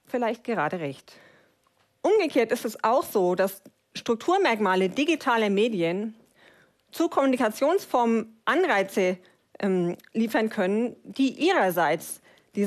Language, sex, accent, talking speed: German, female, German, 100 wpm